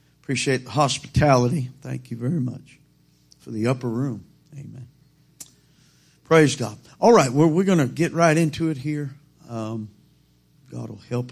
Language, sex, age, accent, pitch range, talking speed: English, male, 50-69, American, 115-145 Hz, 160 wpm